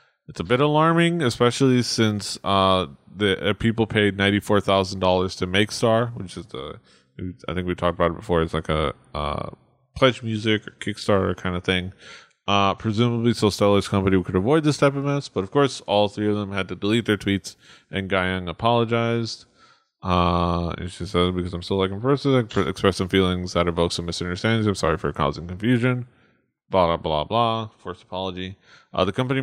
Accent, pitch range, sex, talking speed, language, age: American, 90-120 Hz, male, 190 wpm, English, 20-39